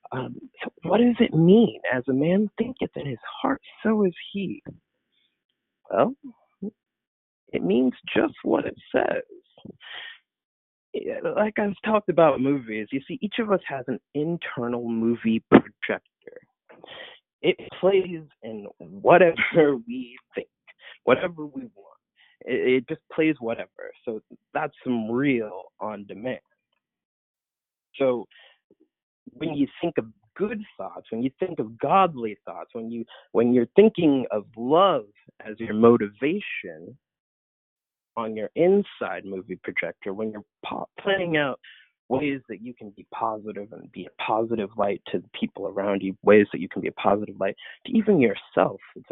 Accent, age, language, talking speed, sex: American, 30-49, English, 140 wpm, male